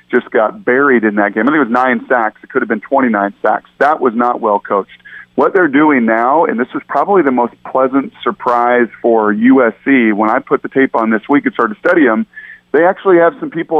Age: 40-59